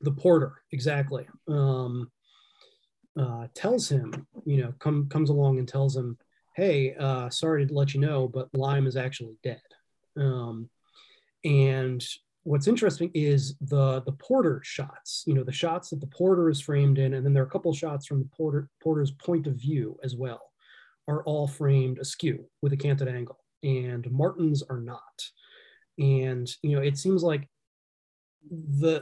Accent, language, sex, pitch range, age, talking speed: American, English, male, 130-150 Hz, 30-49, 170 wpm